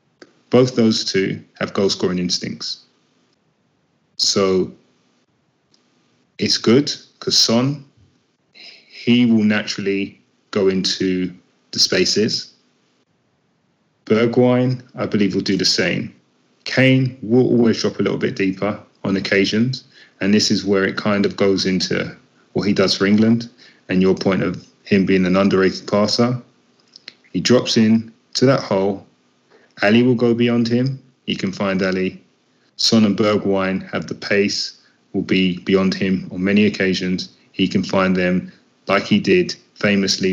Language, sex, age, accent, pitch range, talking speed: English, male, 30-49, British, 95-115 Hz, 140 wpm